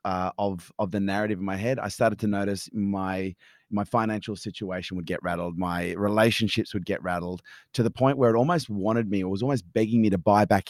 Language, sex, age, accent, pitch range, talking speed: English, male, 30-49, Australian, 100-125 Hz, 225 wpm